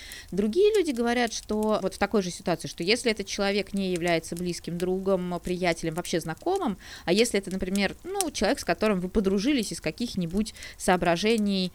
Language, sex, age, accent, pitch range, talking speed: Russian, female, 20-39, native, 170-235 Hz, 170 wpm